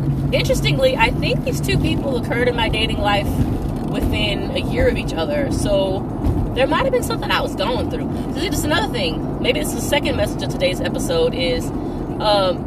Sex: female